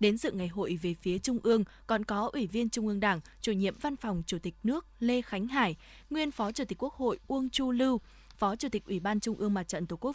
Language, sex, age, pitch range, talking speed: Vietnamese, female, 20-39, 195-250 Hz, 265 wpm